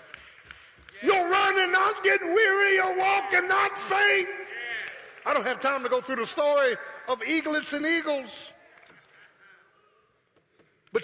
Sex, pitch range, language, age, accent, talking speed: male, 275-345 Hz, English, 50-69, American, 135 wpm